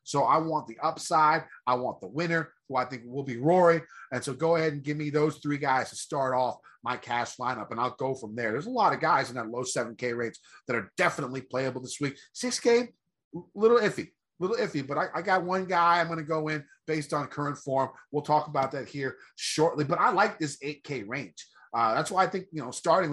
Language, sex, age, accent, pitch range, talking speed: English, male, 30-49, American, 125-155 Hz, 245 wpm